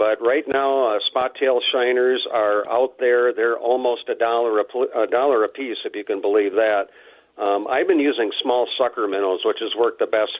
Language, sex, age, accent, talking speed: English, male, 50-69, American, 190 wpm